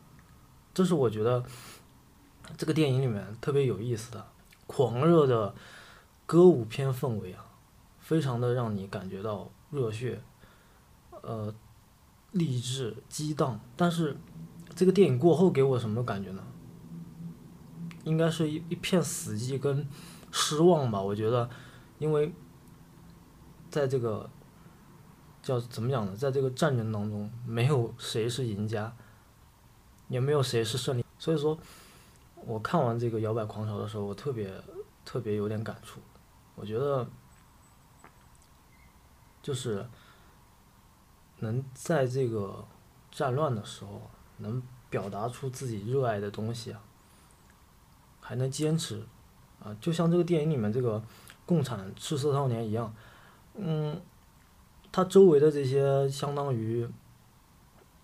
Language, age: Chinese, 20-39